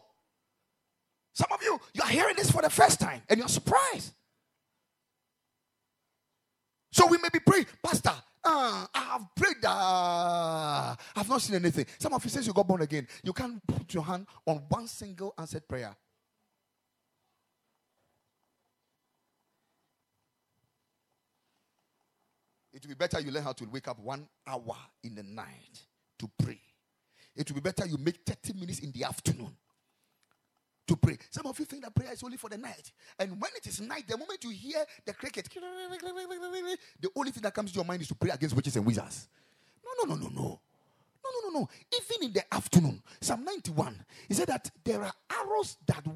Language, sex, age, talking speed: English, male, 30-49, 175 wpm